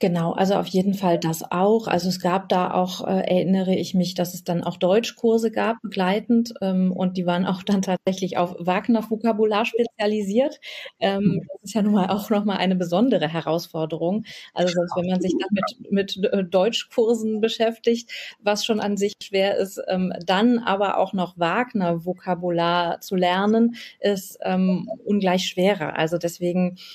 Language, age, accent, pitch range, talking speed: German, 30-49, German, 185-215 Hz, 165 wpm